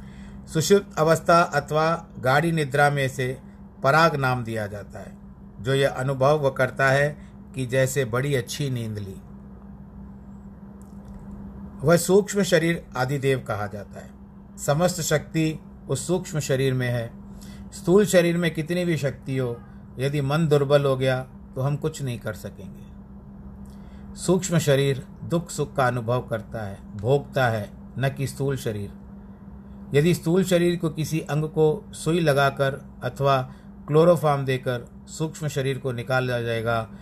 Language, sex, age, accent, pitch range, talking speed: Hindi, male, 50-69, native, 120-150 Hz, 140 wpm